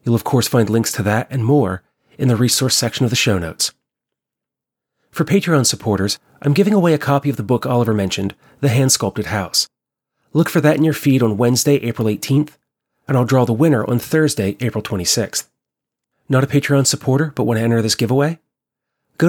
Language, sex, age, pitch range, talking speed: English, male, 30-49, 110-140 Hz, 200 wpm